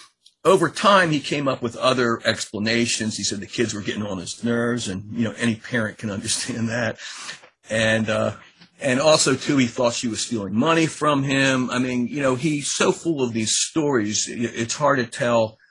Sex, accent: male, American